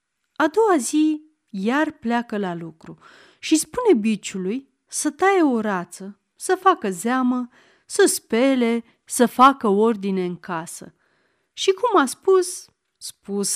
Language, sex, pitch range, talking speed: Romanian, female, 195-310 Hz, 130 wpm